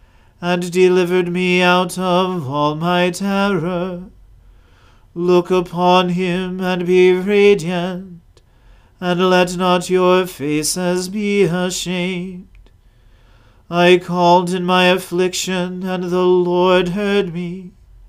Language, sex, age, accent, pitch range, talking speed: English, male, 40-59, American, 170-185 Hz, 105 wpm